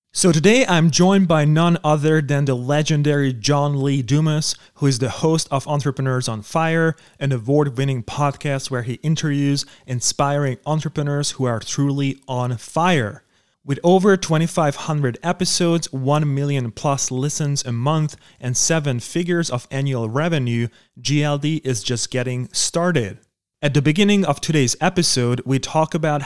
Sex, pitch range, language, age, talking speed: male, 125-155 Hz, English, 30-49, 145 wpm